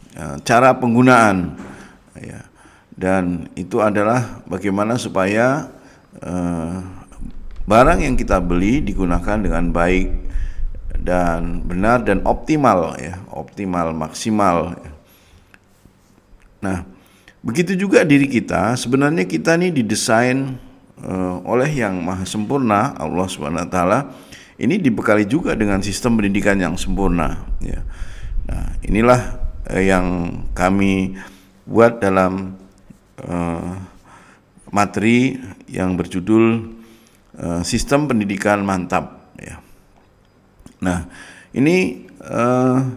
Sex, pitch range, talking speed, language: male, 90-115 Hz, 90 wpm, Indonesian